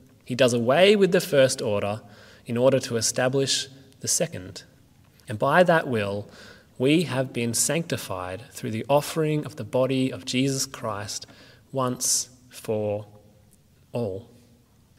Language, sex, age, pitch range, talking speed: English, male, 20-39, 120-160 Hz, 130 wpm